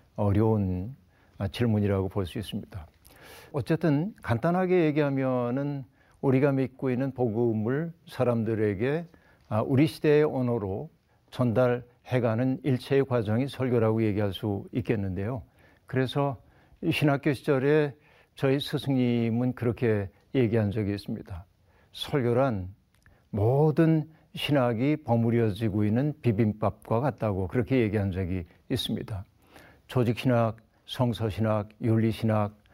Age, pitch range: 60-79, 110-145 Hz